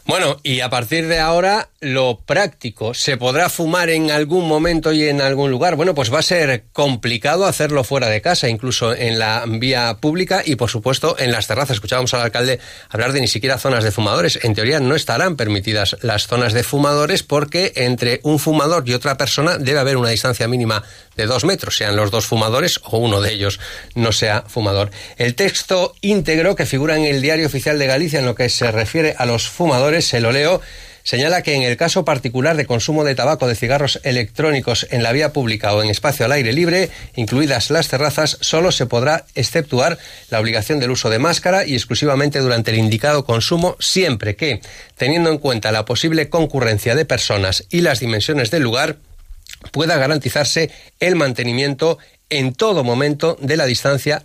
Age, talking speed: 40-59, 190 wpm